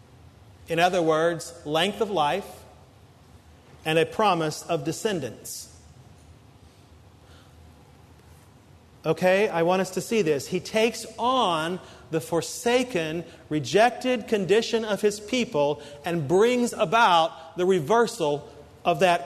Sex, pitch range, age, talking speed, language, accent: male, 175-230 Hz, 40-59, 110 wpm, English, American